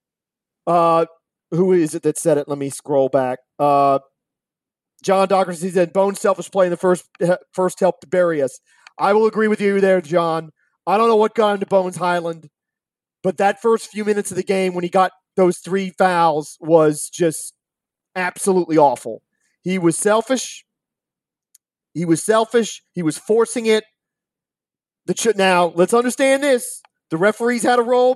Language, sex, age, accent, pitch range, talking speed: English, male, 40-59, American, 180-225 Hz, 170 wpm